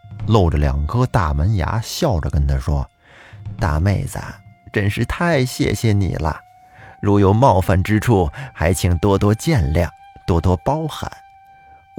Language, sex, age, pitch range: Chinese, male, 30-49, 85-130 Hz